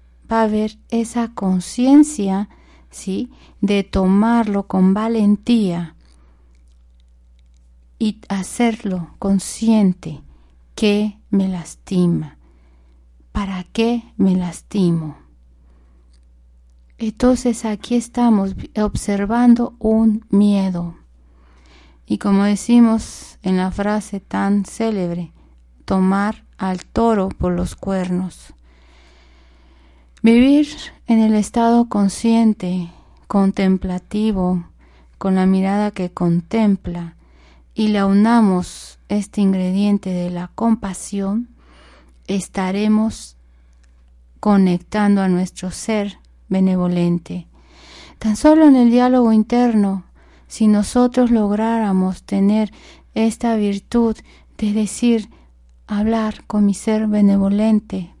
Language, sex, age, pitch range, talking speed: Spanish, female, 40-59, 155-220 Hz, 85 wpm